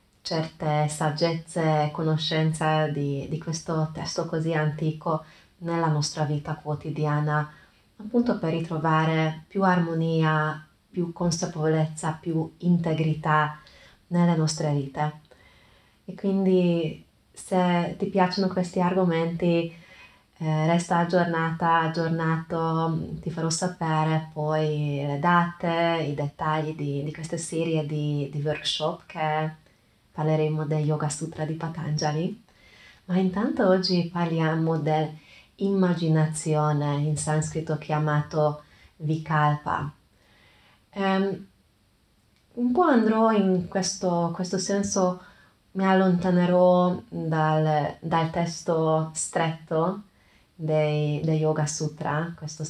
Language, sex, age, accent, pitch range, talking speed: Italian, female, 20-39, native, 150-175 Hz, 100 wpm